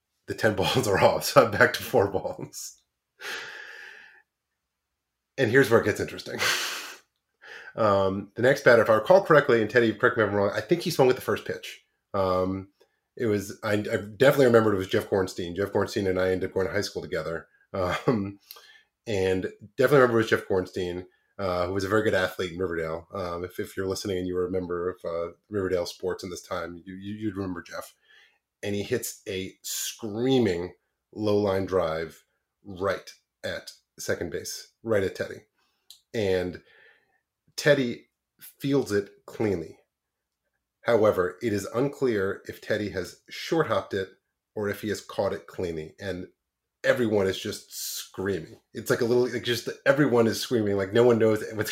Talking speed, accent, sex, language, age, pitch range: 180 wpm, American, male, English, 30-49, 95-125 Hz